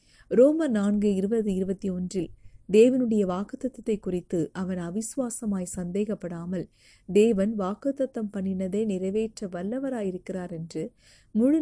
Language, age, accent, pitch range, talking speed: Tamil, 30-49, native, 180-220 Hz, 95 wpm